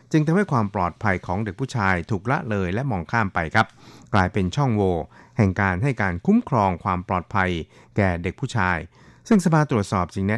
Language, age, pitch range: Thai, 60-79, 95-125 Hz